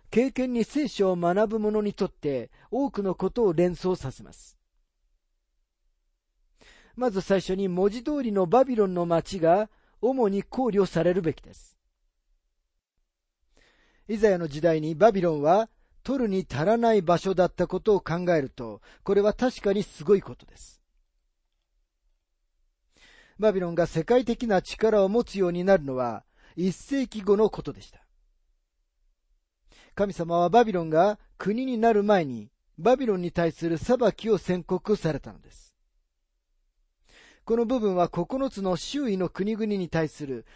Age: 40-59